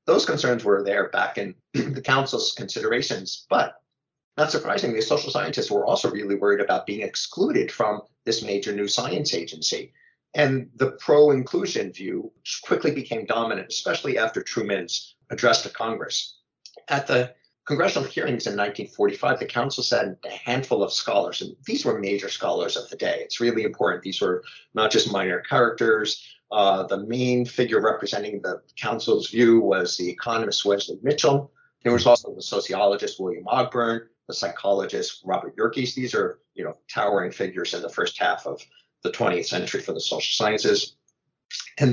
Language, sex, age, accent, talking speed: English, male, 50-69, American, 160 wpm